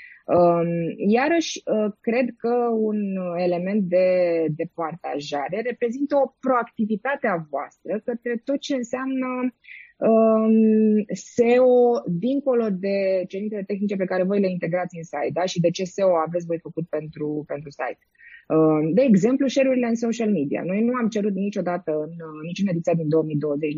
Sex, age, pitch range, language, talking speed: female, 20-39, 160-240 Hz, Romanian, 155 wpm